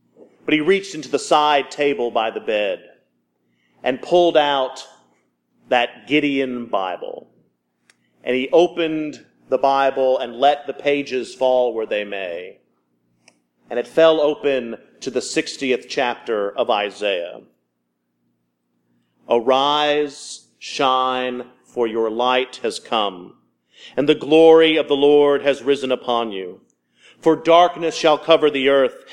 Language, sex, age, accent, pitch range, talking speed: English, male, 40-59, American, 115-150 Hz, 130 wpm